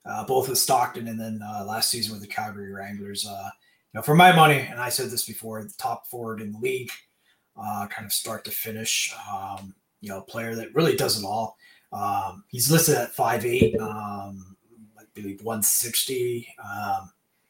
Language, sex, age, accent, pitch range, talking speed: English, male, 30-49, American, 105-145 Hz, 200 wpm